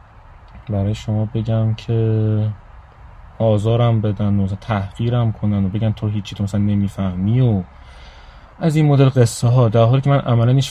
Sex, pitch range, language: male, 100-120 Hz, Persian